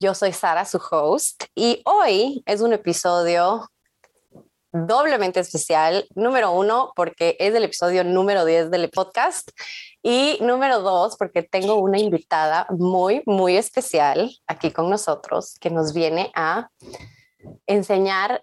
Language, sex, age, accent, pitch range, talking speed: Spanish, female, 20-39, Mexican, 175-235 Hz, 130 wpm